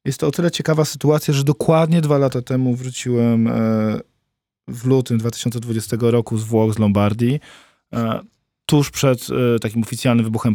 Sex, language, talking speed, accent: male, Polish, 140 wpm, native